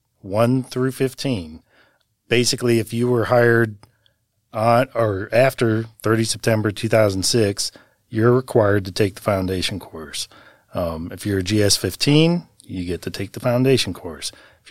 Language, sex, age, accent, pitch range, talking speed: English, male, 40-59, American, 95-120 Hz, 145 wpm